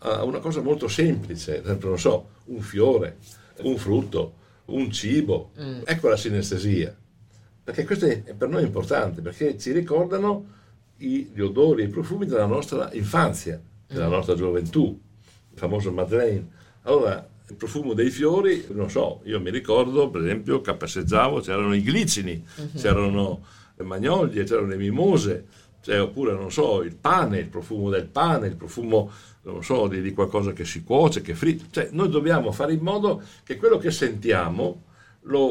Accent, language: Italian, English